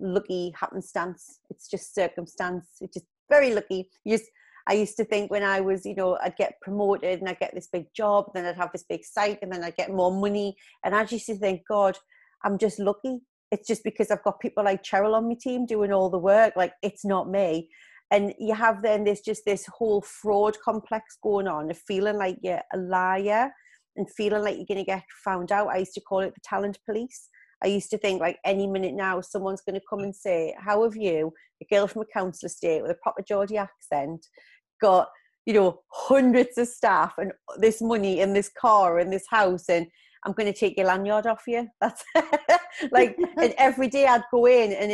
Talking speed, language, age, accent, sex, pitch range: 215 wpm, English, 30-49, British, female, 190-225 Hz